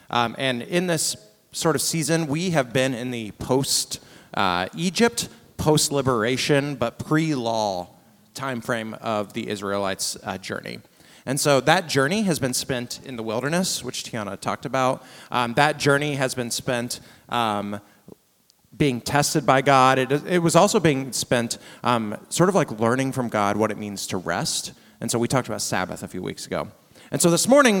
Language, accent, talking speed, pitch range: English, American, 175 wpm, 115-155 Hz